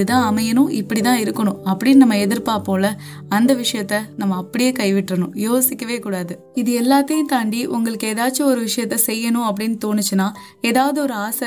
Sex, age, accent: female, 20-39, native